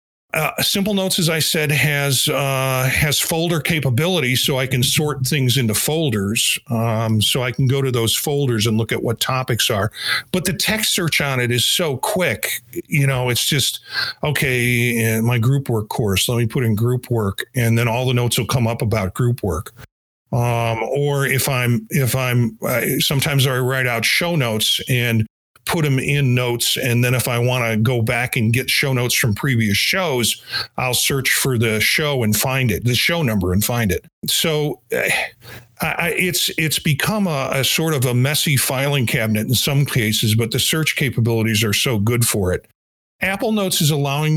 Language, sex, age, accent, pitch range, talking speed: English, male, 50-69, American, 115-150 Hz, 195 wpm